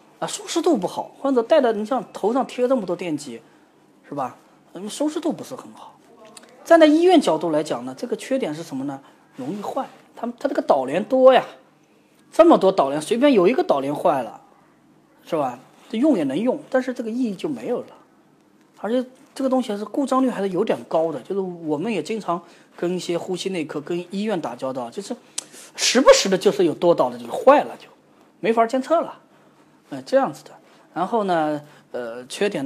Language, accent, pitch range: Chinese, native, 155-260 Hz